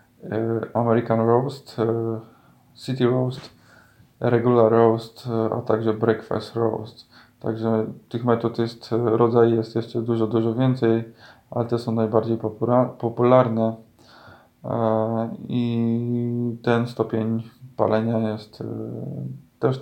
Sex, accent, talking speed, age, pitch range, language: male, native, 95 wpm, 20-39, 110-120 Hz, Polish